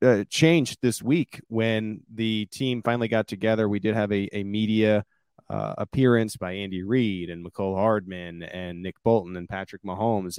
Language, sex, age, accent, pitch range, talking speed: English, male, 30-49, American, 100-120 Hz, 175 wpm